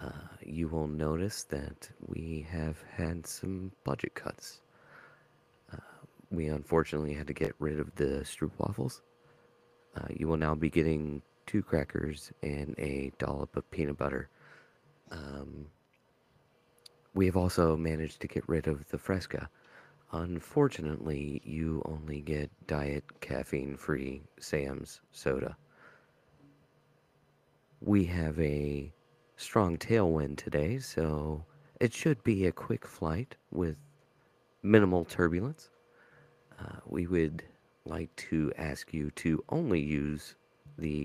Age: 30-49